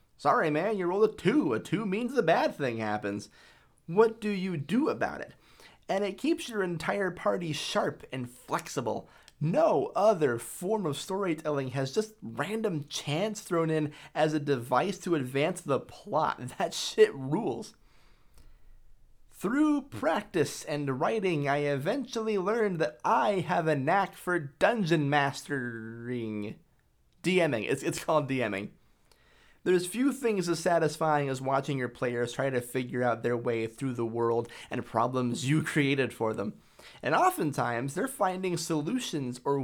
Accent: American